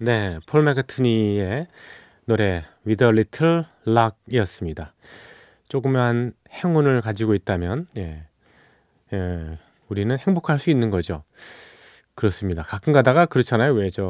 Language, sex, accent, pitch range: Korean, male, native, 95-130 Hz